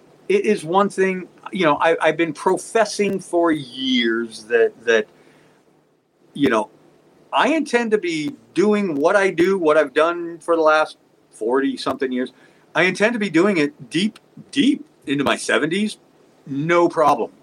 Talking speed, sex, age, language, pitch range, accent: 155 wpm, male, 50-69, English, 145-220 Hz, American